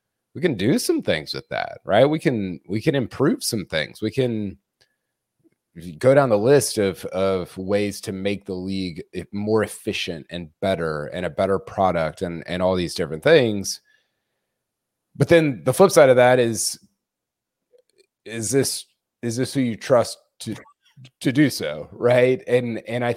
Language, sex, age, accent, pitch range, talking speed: English, male, 30-49, American, 100-135 Hz, 170 wpm